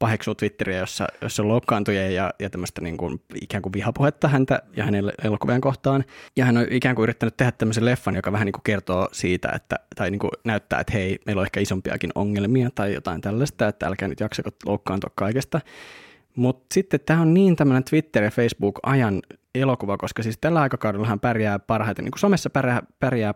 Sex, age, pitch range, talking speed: male, 20-39, 100-130 Hz, 180 wpm